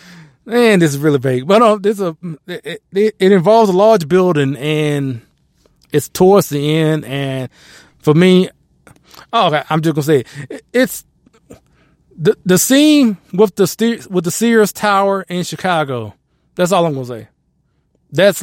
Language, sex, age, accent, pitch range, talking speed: English, male, 20-39, American, 135-180 Hz, 160 wpm